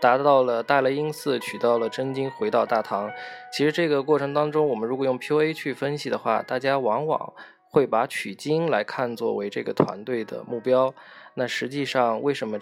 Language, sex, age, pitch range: Chinese, male, 20-39, 120-155 Hz